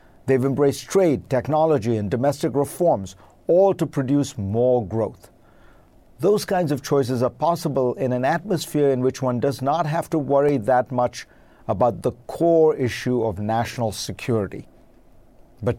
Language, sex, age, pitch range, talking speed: English, male, 50-69, 120-155 Hz, 150 wpm